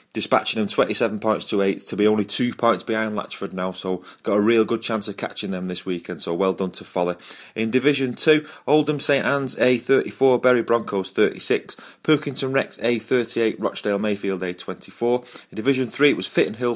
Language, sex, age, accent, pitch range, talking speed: English, male, 30-49, British, 100-130 Hz, 205 wpm